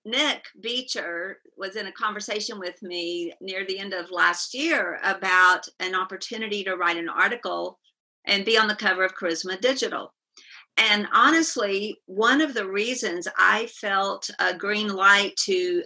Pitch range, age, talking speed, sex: 185-225 Hz, 50-69, 155 wpm, female